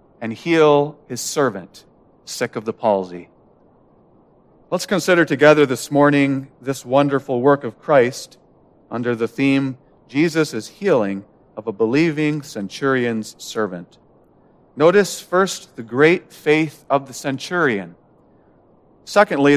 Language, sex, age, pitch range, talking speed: English, male, 40-59, 135-190 Hz, 115 wpm